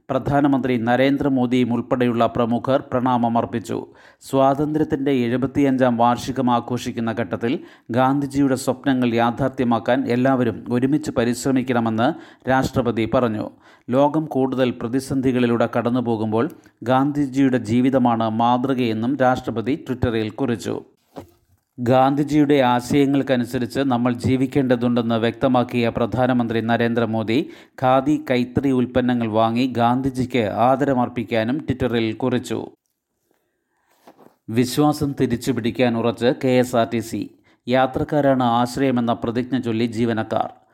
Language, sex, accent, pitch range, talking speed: Malayalam, male, native, 120-135 Hz, 80 wpm